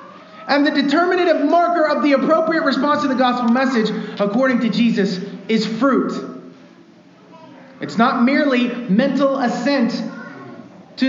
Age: 30-49